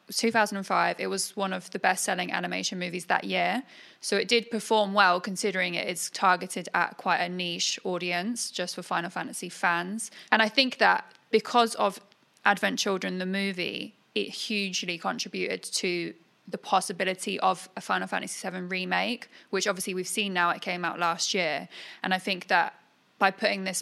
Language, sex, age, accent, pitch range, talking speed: English, female, 20-39, British, 180-205 Hz, 170 wpm